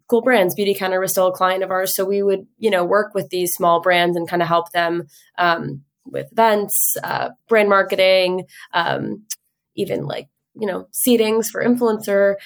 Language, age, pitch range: English, 20-39, 170-200 Hz